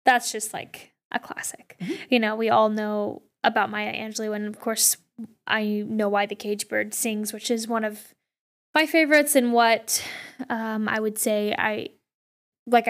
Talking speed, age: 170 wpm, 10-29